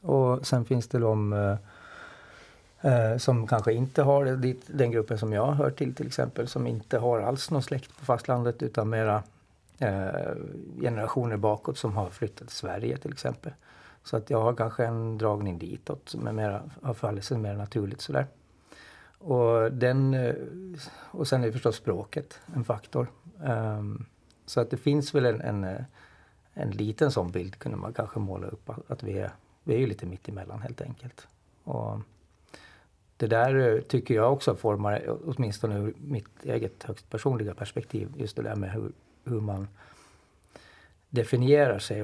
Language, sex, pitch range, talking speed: Swedish, male, 105-125 Hz, 165 wpm